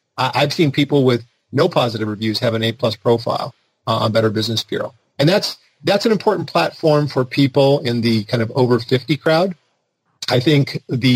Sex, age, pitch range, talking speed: male, 40-59, 120-145 Hz, 185 wpm